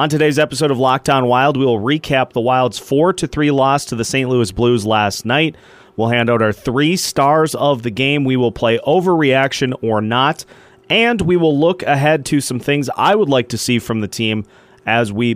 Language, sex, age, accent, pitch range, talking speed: English, male, 30-49, American, 115-145 Hz, 210 wpm